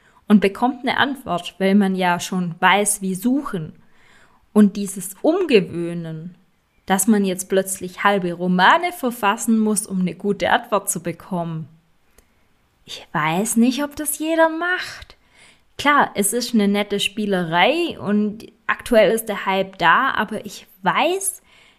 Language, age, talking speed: German, 20-39, 140 wpm